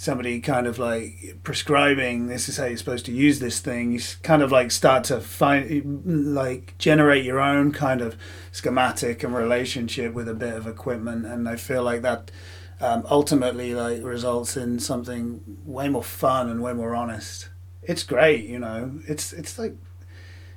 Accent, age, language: British, 30-49, English